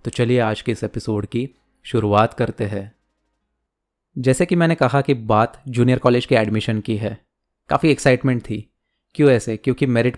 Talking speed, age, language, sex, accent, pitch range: 170 wpm, 20-39, Hindi, male, native, 110-130 Hz